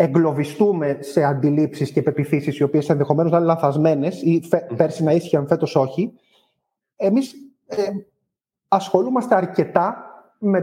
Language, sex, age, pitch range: Greek, male, 30-49, 150-205 Hz